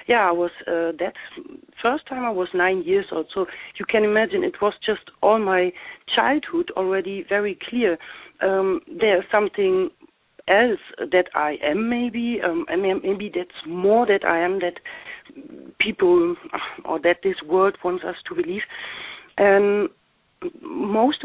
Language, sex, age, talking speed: English, female, 60-79, 155 wpm